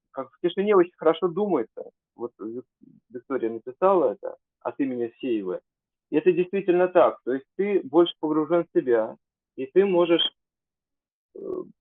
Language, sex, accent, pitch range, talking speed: Russian, male, native, 150-210 Hz, 125 wpm